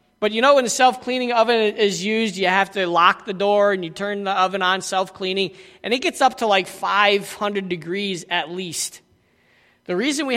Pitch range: 205-255 Hz